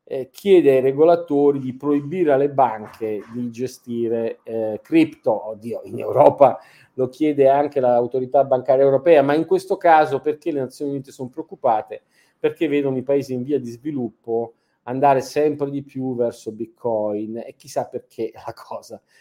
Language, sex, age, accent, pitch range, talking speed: Italian, male, 40-59, native, 115-150 Hz, 155 wpm